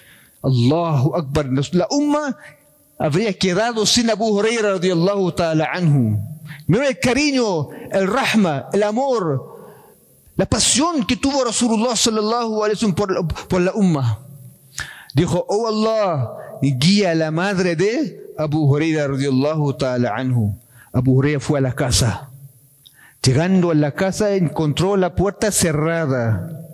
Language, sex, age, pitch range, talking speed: Spanish, male, 40-59, 145-205 Hz, 120 wpm